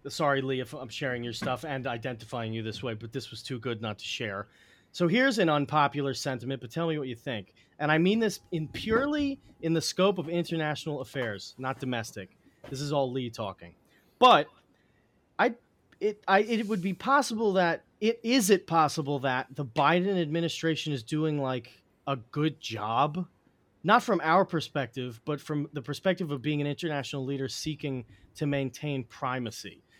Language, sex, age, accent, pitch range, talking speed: English, male, 30-49, American, 130-165 Hz, 180 wpm